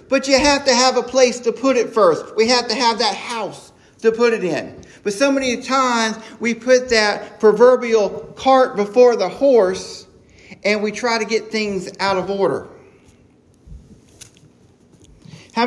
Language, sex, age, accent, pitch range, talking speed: English, male, 40-59, American, 200-245 Hz, 165 wpm